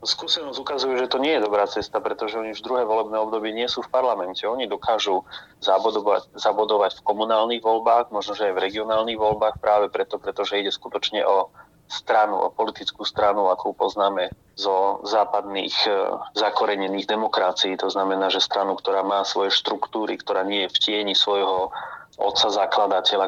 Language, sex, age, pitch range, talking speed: Slovak, male, 30-49, 100-110 Hz, 165 wpm